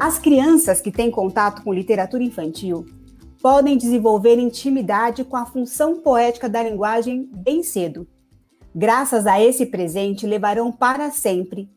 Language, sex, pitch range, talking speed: Portuguese, female, 205-265 Hz, 135 wpm